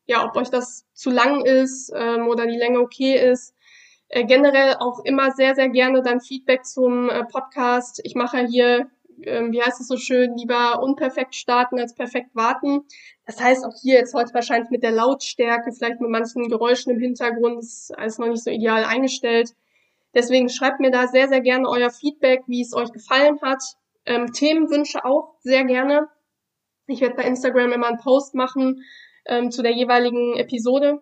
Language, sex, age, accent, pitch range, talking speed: German, female, 20-39, German, 240-265 Hz, 185 wpm